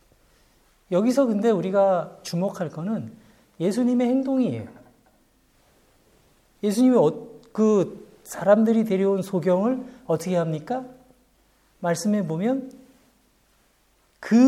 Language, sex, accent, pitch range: Korean, male, native, 170-250 Hz